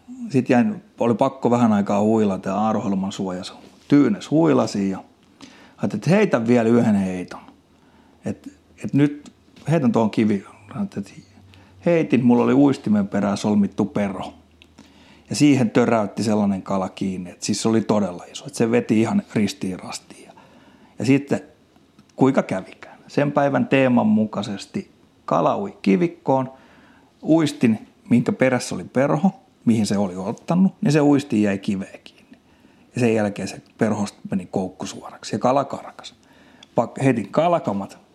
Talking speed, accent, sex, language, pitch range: 135 wpm, native, male, Finnish, 100-140 Hz